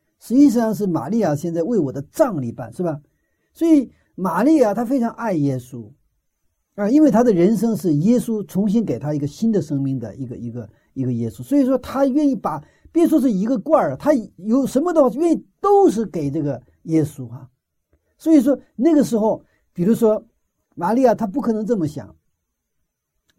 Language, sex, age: Chinese, male, 50-69